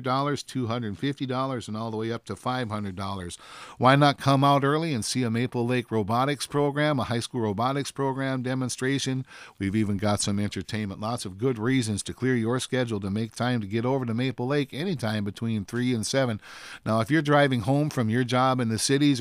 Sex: male